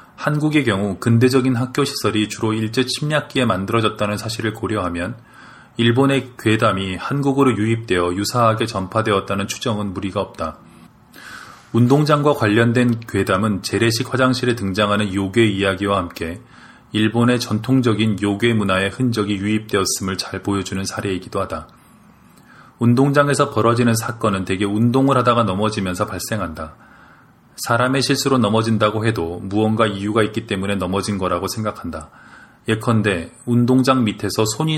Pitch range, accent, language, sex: 100-120 Hz, native, Korean, male